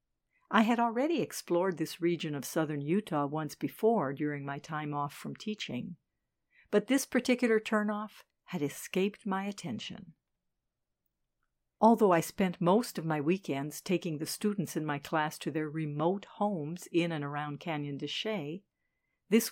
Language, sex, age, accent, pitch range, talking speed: English, female, 60-79, American, 160-210 Hz, 150 wpm